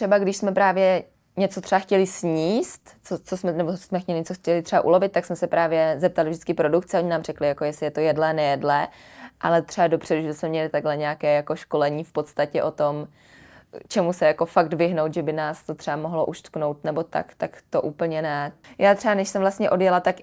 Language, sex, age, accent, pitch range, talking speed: Czech, female, 20-39, native, 155-185 Hz, 215 wpm